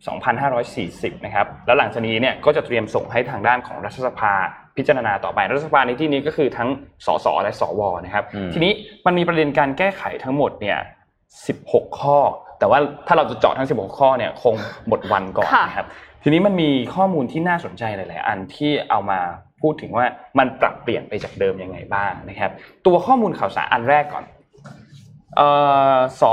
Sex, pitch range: male, 110-175 Hz